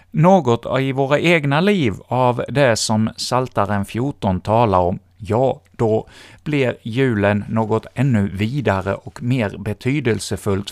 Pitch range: 100-135 Hz